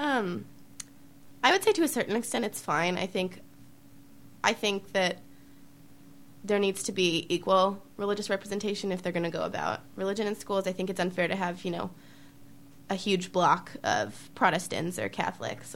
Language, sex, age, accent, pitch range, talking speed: English, female, 20-39, American, 170-195 Hz, 175 wpm